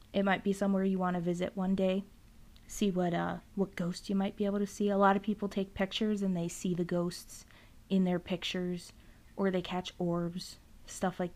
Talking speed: 215 wpm